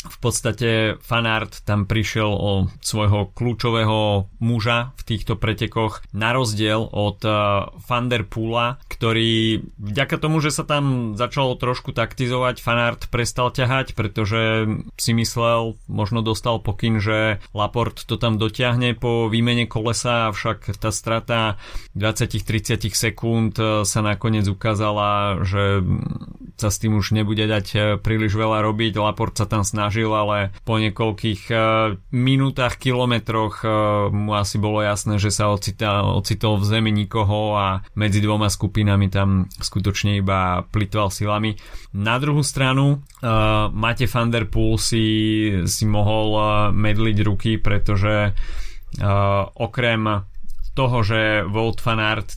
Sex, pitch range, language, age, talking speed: male, 105-115 Hz, Slovak, 30-49, 125 wpm